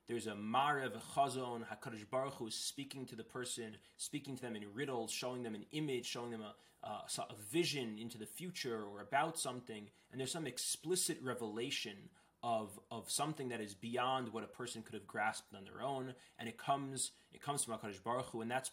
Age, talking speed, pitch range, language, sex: 20-39, 200 wpm, 110-135 Hz, English, male